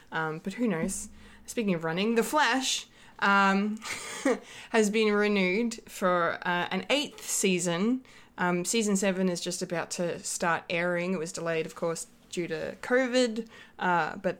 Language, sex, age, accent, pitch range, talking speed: English, female, 20-39, Australian, 175-220 Hz, 155 wpm